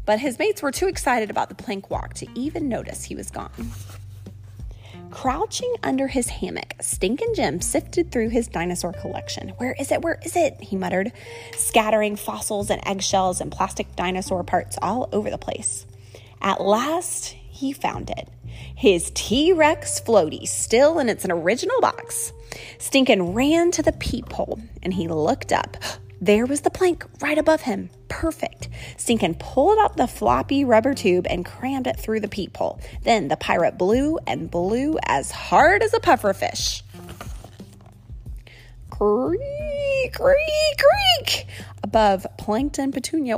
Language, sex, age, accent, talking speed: English, female, 20-39, American, 150 wpm